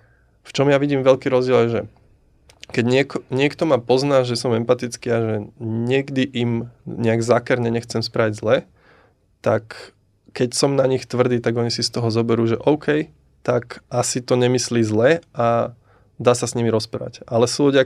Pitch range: 110-125 Hz